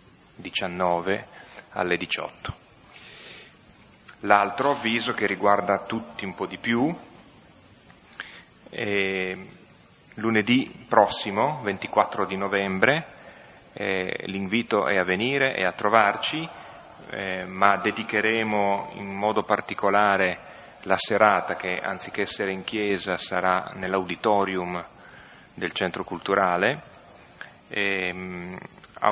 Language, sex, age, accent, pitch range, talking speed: Italian, male, 30-49, native, 90-105 Hz, 95 wpm